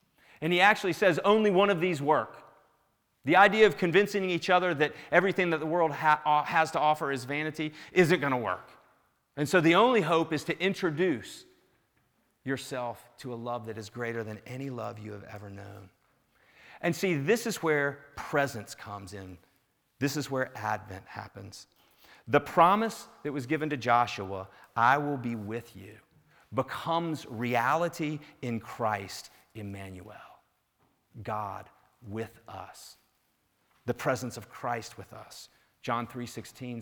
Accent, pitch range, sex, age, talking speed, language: American, 110-155 Hz, male, 40-59, 150 wpm, English